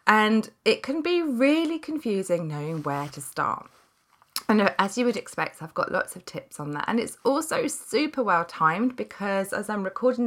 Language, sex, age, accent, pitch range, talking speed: English, female, 20-39, British, 165-220 Hz, 180 wpm